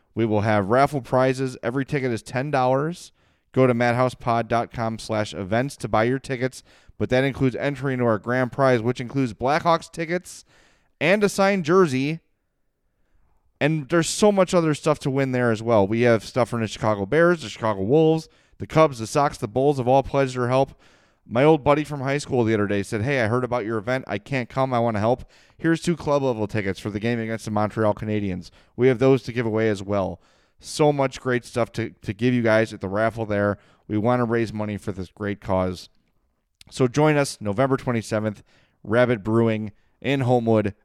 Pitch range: 105-135 Hz